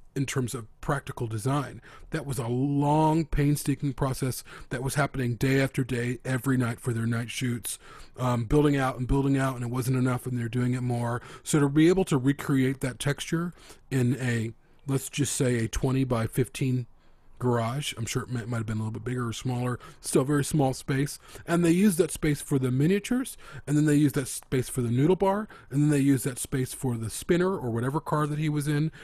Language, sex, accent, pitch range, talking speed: English, male, American, 120-150 Hz, 220 wpm